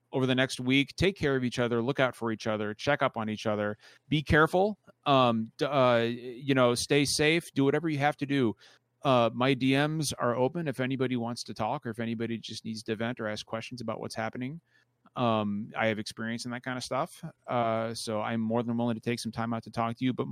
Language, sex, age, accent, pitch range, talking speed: English, male, 30-49, American, 110-135 Hz, 240 wpm